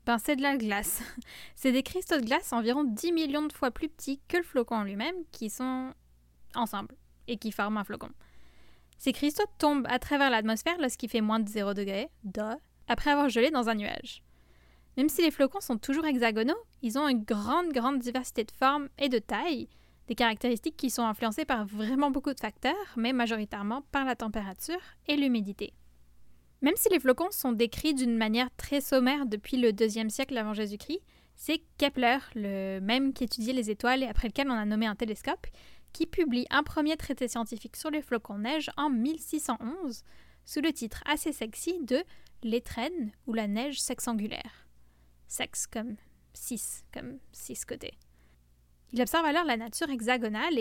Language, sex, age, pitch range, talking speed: French, female, 10-29, 220-285 Hz, 180 wpm